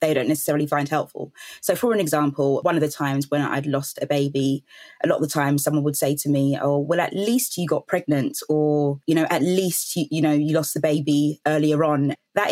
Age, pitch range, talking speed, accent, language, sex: 20-39, 145-160 Hz, 240 wpm, British, English, female